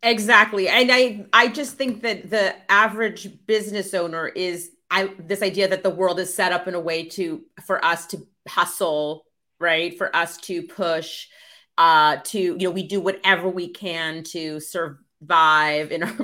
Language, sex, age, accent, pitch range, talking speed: English, female, 30-49, American, 170-225 Hz, 170 wpm